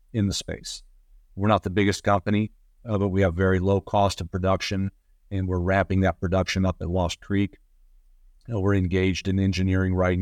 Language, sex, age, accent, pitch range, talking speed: English, male, 50-69, American, 90-105 Hz, 190 wpm